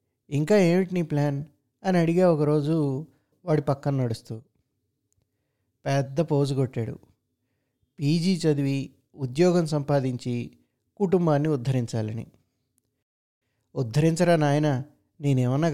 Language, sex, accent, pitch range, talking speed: Telugu, male, native, 125-155 Hz, 85 wpm